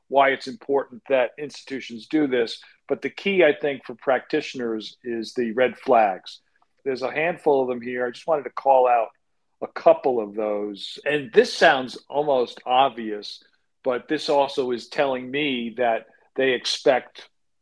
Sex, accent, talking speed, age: male, American, 165 wpm, 50-69